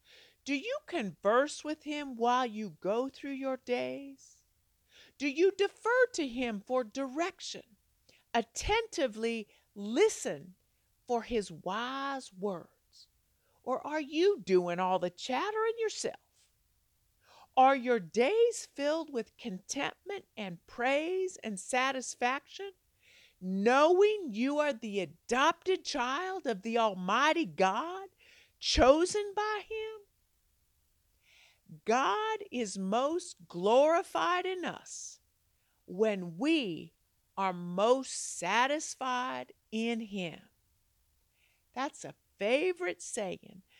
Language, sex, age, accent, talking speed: English, female, 50-69, American, 100 wpm